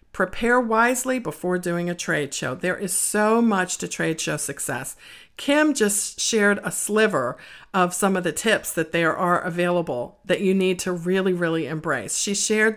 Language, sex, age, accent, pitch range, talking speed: English, female, 50-69, American, 170-220 Hz, 180 wpm